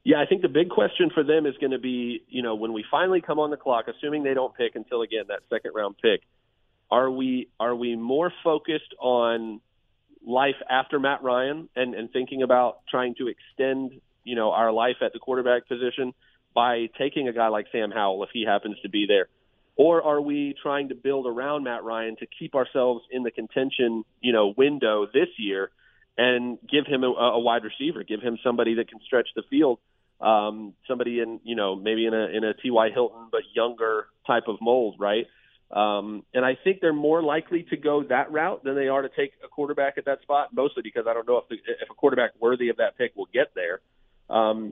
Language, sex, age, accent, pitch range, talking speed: English, male, 30-49, American, 115-155 Hz, 215 wpm